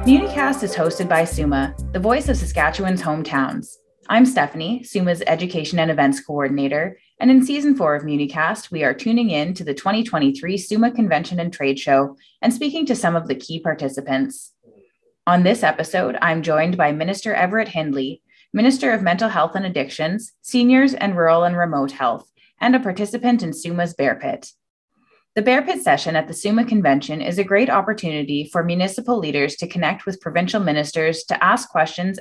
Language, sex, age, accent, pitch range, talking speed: English, female, 20-39, American, 150-225 Hz, 175 wpm